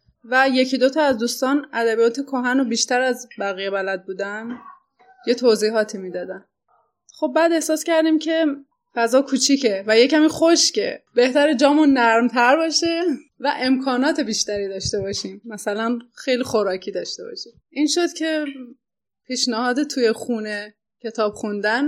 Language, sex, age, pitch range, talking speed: Persian, female, 20-39, 225-290 Hz, 130 wpm